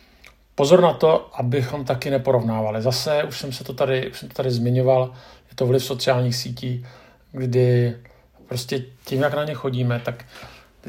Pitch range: 115-135 Hz